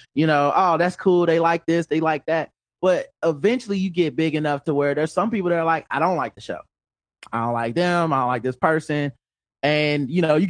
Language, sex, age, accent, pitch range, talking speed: English, male, 20-39, American, 140-180 Hz, 245 wpm